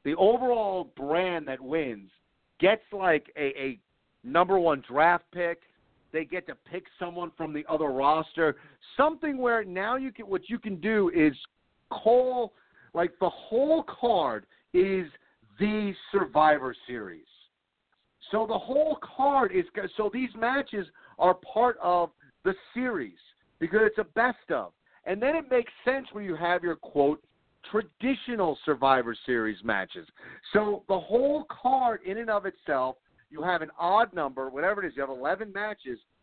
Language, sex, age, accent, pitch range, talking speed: English, male, 50-69, American, 155-225 Hz, 155 wpm